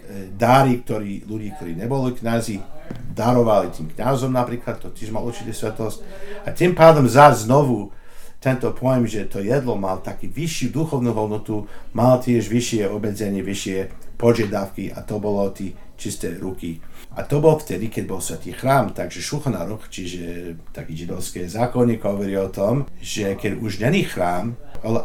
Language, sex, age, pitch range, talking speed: Slovak, male, 50-69, 95-125 Hz, 155 wpm